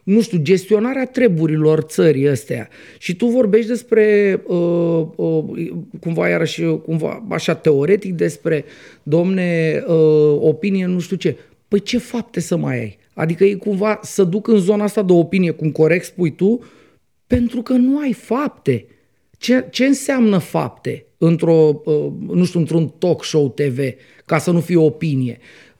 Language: Romanian